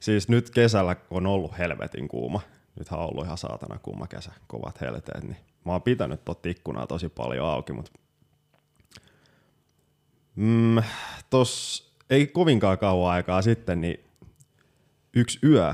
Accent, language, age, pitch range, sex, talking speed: native, Finnish, 20-39, 90-115 Hz, male, 135 wpm